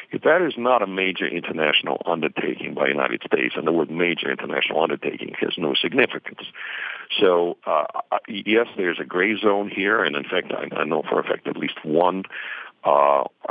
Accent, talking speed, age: American, 185 wpm, 60-79